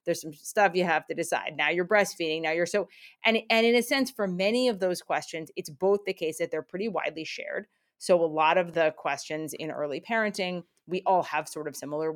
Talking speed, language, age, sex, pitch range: 230 wpm, English, 30-49, female, 160-215 Hz